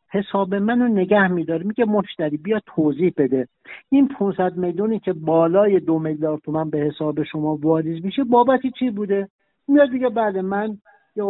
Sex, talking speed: male, 155 wpm